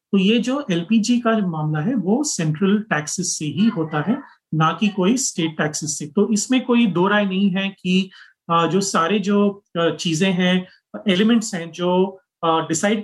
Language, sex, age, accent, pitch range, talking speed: Hindi, male, 30-49, native, 170-210 Hz, 170 wpm